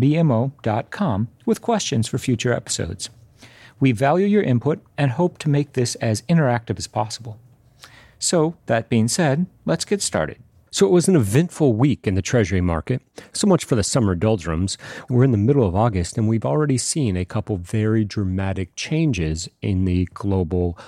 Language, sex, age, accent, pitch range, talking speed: English, male, 40-59, American, 95-125 Hz, 170 wpm